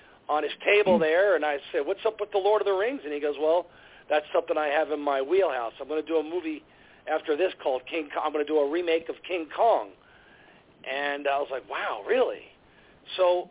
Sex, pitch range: male, 155-210 Hz